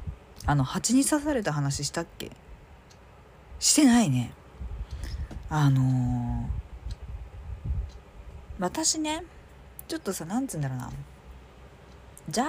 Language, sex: Japanese, female